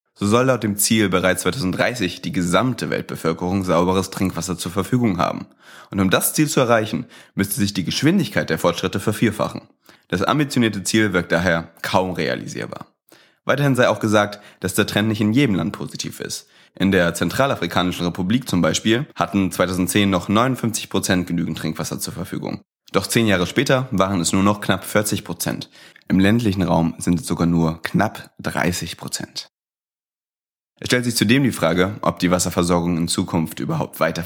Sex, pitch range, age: male, 85-105 Hz, 30-49